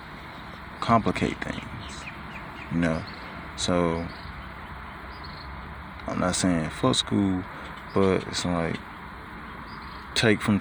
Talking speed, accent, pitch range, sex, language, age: 85 wpm, American, 80-95 Hz, male, English, 20-39